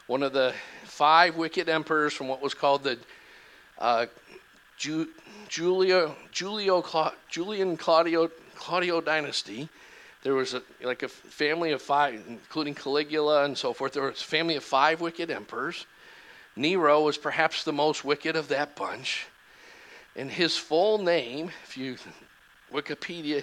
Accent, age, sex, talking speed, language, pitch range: American, 50-69, male, 130 wpm, English, 135-165 Hz